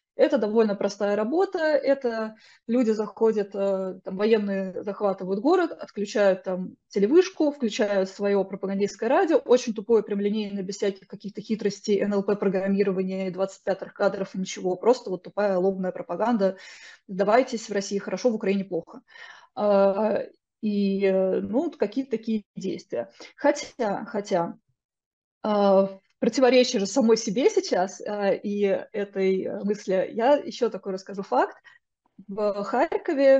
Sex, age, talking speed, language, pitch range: female, 20-39, 115 wpm, Russian, 200-245 Hz